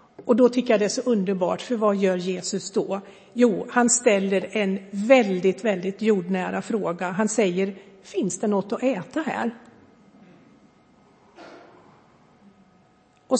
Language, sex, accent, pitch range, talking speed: Swedish, female, native, 195-240 Hz, 135 wpm